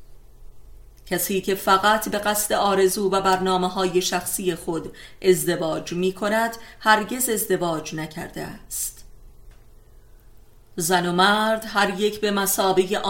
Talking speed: 105 wpm